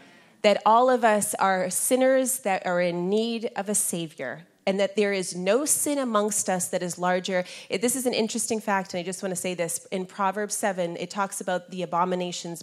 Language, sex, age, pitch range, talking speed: English, female, 30-49, 175-215 Hz, 210 wpm